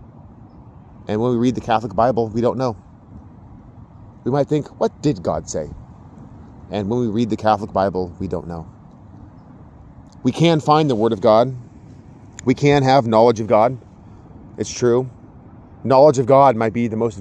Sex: male